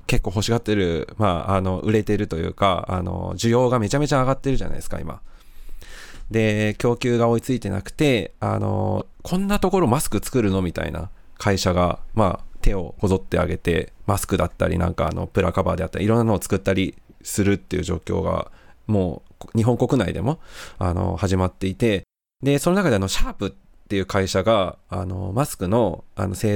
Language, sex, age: Japanese, male, 20-39